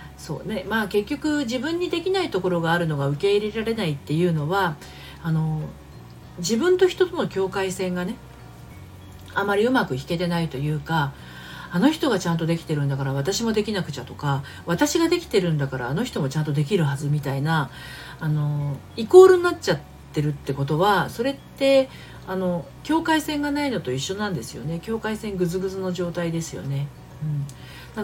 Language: Japanese